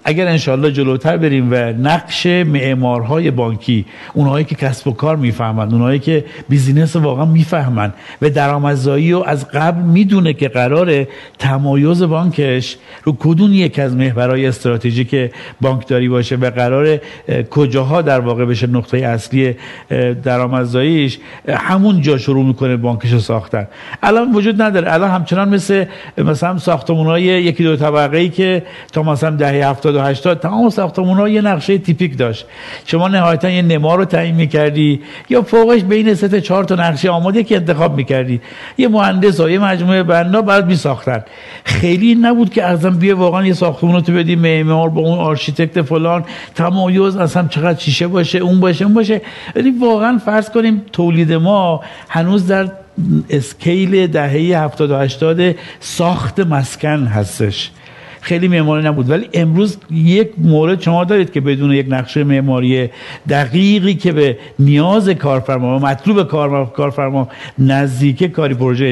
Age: 50-69